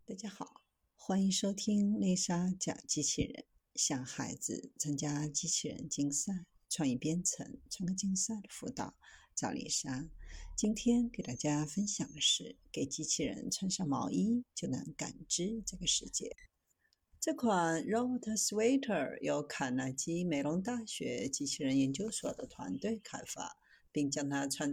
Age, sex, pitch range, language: 50-69, female, 145-235 Hz, Chinese